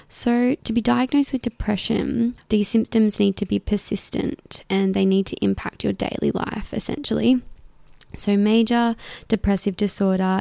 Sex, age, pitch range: female, 20-39, 190-230 Hz